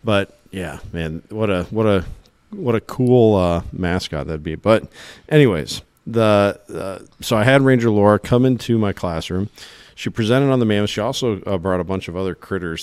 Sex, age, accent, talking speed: male, 40-59, American, 190 wpm